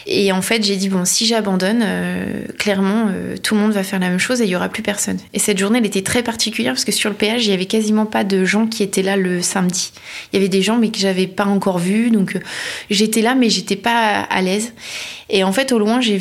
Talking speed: 280 wpm